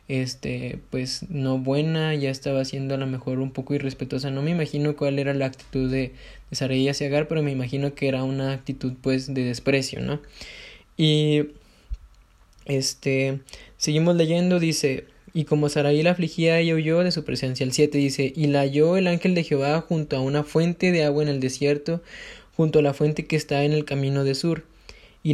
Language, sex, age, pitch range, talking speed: Spanish, male, 20-39, 135-160 Hz, 195 wpm